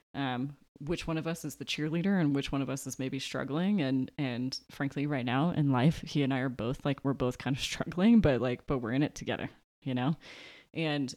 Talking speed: 235 wpm